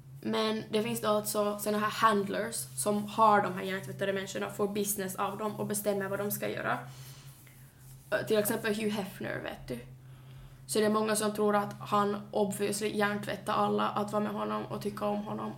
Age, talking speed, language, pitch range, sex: 20-39, 185 wpm, Swedish, 130-210 Hz, female